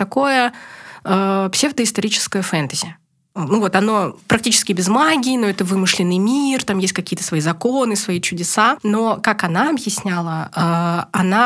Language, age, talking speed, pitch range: Russian, 20-39, 140 wpm, 170-210 Hz